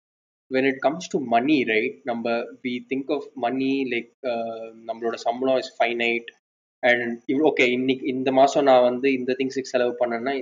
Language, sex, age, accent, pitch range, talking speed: Tamil, male, 20-39, native, 120-175 Hz, 130 wpm